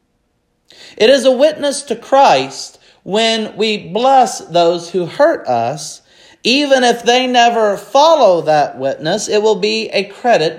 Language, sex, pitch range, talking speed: English, male, 165-225 Hz, 140 wpm